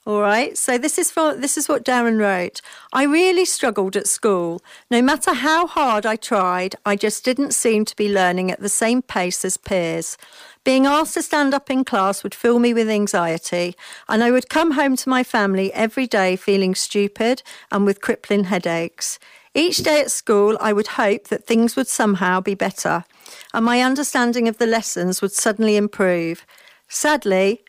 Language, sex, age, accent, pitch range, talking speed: English, female, 50-69, British, 195-260 Hz, 180 wpm